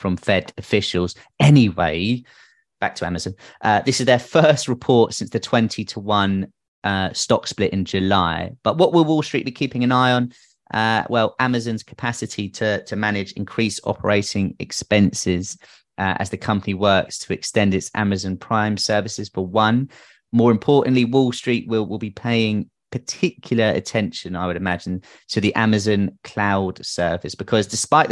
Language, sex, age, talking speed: English, male, 30-49, 160 wpm